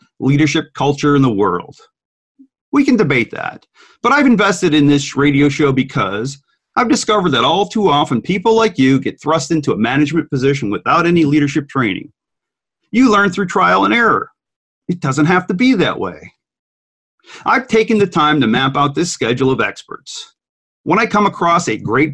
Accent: American